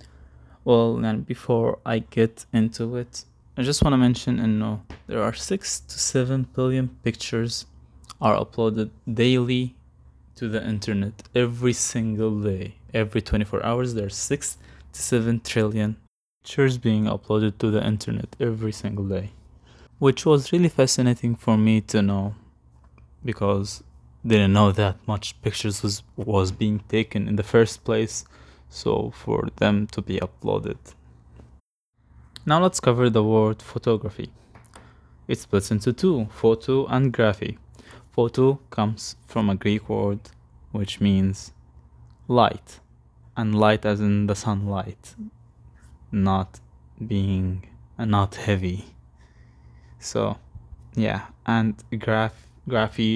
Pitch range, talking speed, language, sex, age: 90-115 Hz, 130 wpm, English, male, 20-39